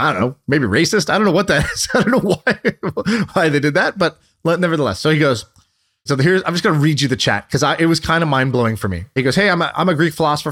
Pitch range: 115-160 Hz